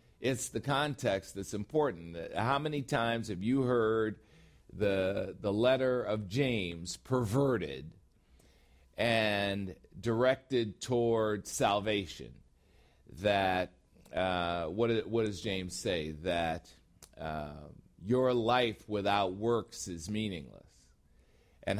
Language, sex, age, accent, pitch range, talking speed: English, male, 40-59, American, 95-125 Hz, 105 wpm